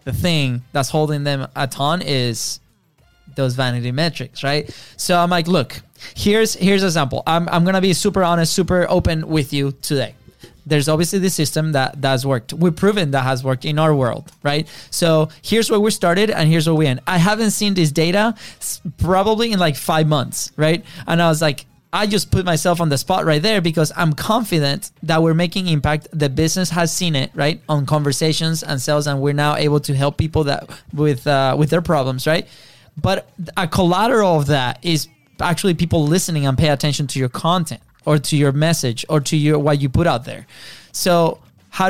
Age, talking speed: 20-39, 205 wpm